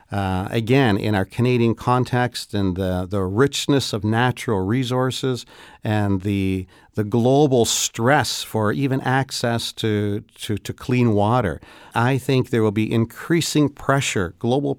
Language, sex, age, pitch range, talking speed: English, male, 50-69, 105-130 Hz, 140 wpm